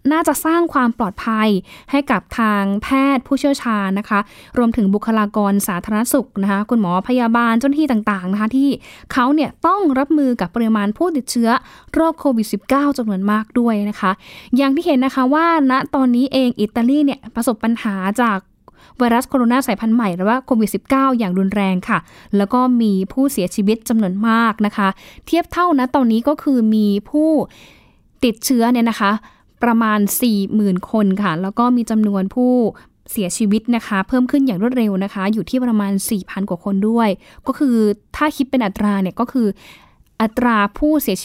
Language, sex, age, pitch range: Thai, female, 10-29, 205-255 Hz